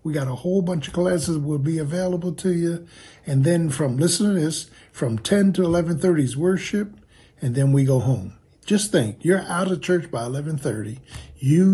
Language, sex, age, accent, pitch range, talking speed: English, male, 60-79, American, 135-175 Hz, 195 wpm